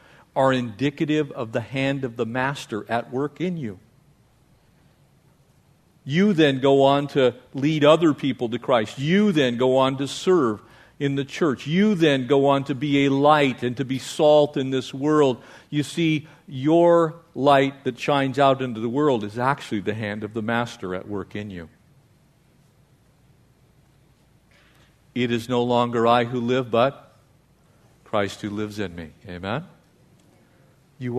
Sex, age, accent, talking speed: male, 50-69, American, 160 wpm